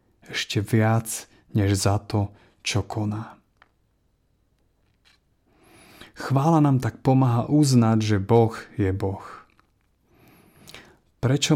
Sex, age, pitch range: male, 30-49, 105-125 Hz